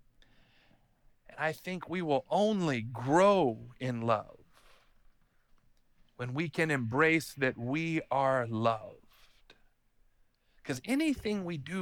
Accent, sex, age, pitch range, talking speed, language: American, male, 40-59, 175-245 Hz, 100 wpm, English